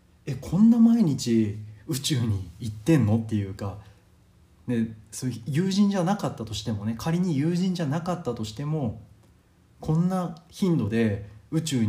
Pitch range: 105-130 Hz